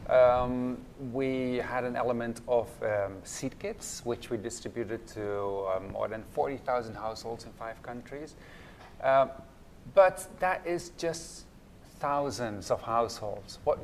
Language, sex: English, male